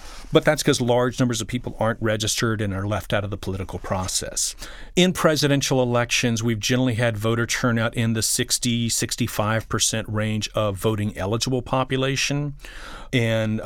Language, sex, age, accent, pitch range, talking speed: English, male, 40-59, American, 105-130 Hz, 155 wpm